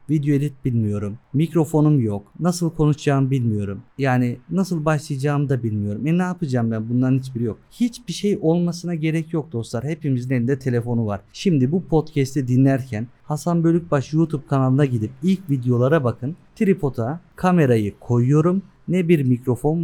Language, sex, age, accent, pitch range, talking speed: Turkish, male, 50-69, native, 125-165 Hz, 145 wpm